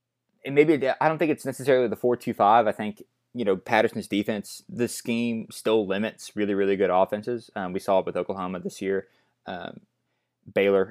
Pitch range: 95-120 Hz